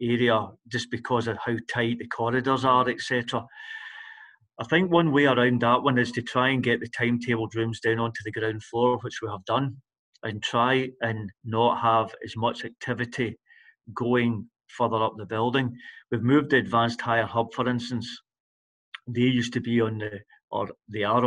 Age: 40-59